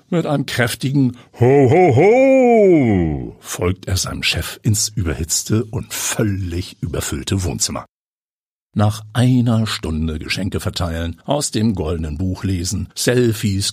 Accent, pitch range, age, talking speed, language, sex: German, 90-120 Hz, 60-79, 110 wpm, German, male